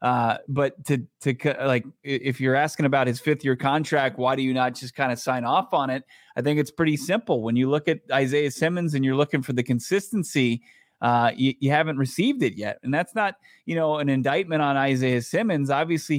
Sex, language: male, English